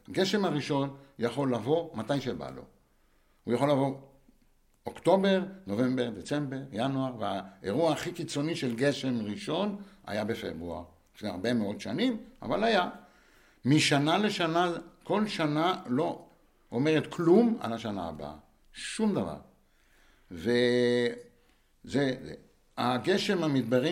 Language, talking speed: Hebrew, 105 wpm